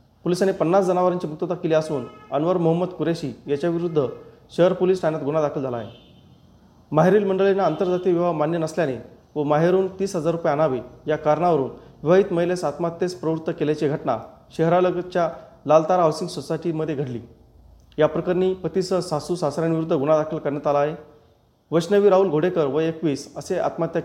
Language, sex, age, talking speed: Marathi, male, 40-59, 145 wpm